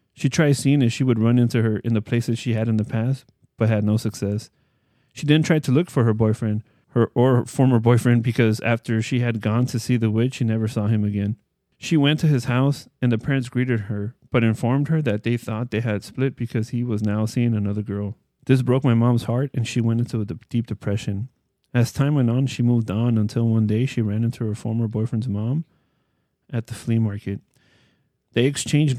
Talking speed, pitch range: 220 wpm, 110-125 Hz